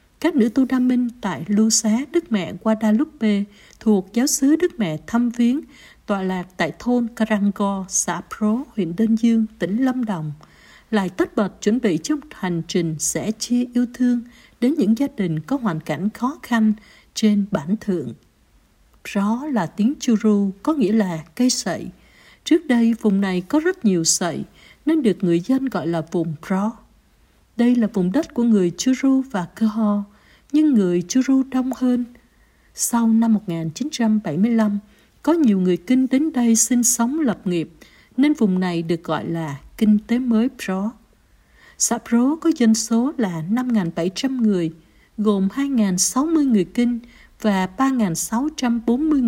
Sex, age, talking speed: female, 60-79, 165 wpm